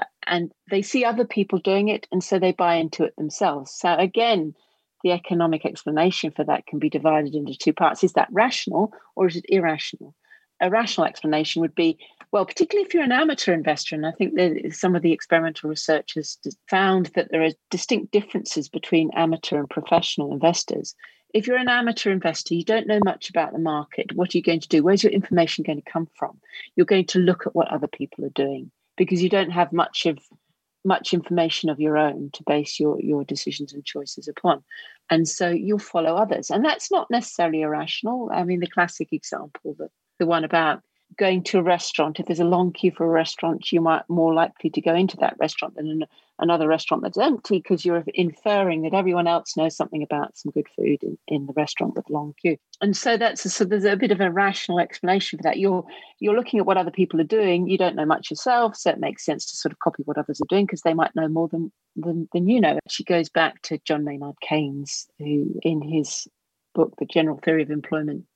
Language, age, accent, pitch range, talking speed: English, 40-59, British, 155-195 Hz, 220 wpm